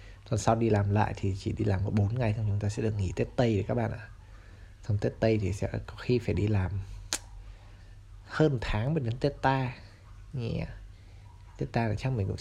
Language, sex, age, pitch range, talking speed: Vietnamese, male, 20-39, 100-115 Hz, 230 wpm